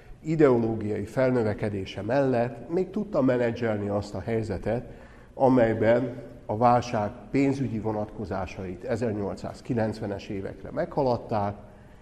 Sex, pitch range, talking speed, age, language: male, 105-120 Hz, 85 wpm, 60-79, Hungarian